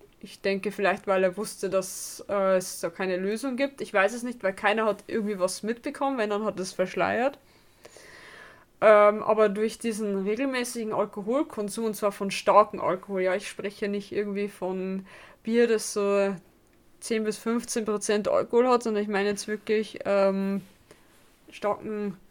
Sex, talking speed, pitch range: female, 165 wpm, 200-230 Hz